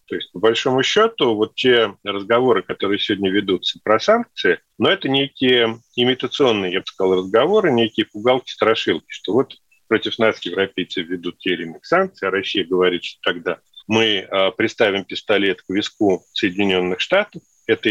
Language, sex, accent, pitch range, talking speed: Russian, male, native, 105-135 Hz, 150 wpm